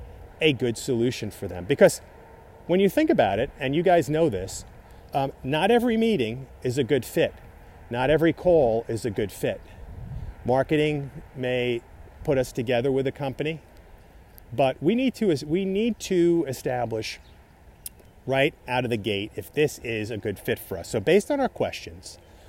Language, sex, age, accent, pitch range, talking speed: English, male, 40-59, American, 95-145 Hz, 170 wpm